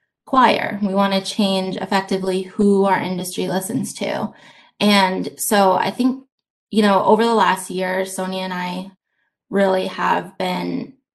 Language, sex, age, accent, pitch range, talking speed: English, female, 20-39, American, 190-225 Hz, 145 wpm